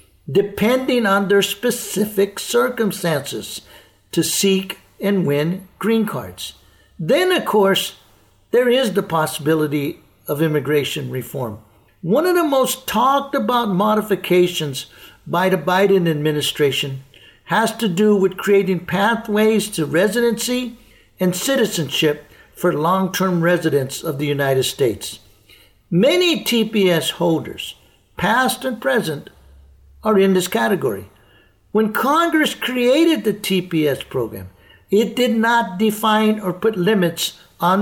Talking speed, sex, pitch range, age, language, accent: 115 wpm, male, 160-235 Hz, 60-79, English, American